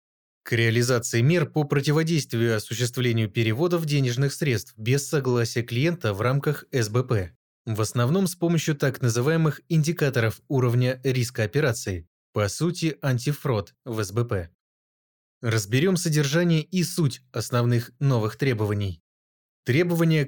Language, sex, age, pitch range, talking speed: Russian, male, 20-39, 115-150 Hz, 110 wpm